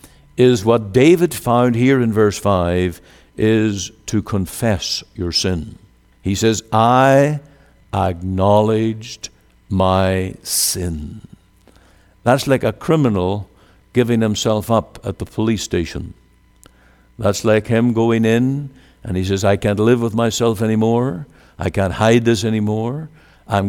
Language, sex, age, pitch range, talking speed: English, male, 60-79, 90-115 Hz, 125 wpm